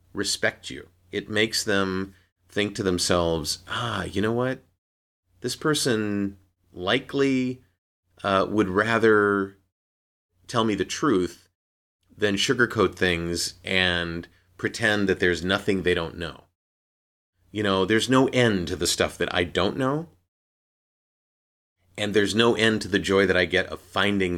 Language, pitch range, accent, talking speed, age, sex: English, 90-110 Hz, American, 140 wpm, 30-49, male